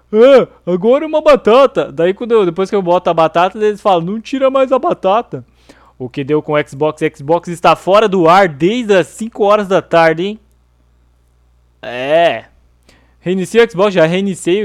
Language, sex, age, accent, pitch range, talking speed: Portuguese, male, 20-39, Brazilian, 130-200 Hz, 185 wpm